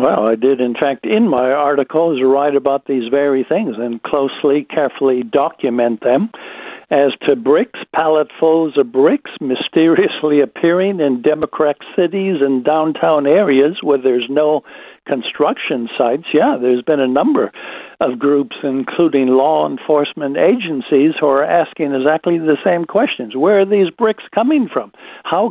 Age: 60-79